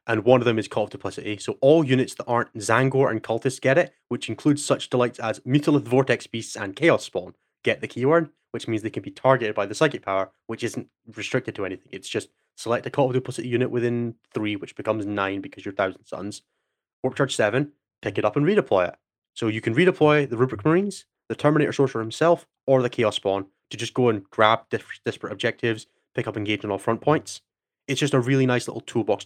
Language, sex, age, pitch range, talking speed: English, male, 20-39, 105-130 Hz, 225 wpm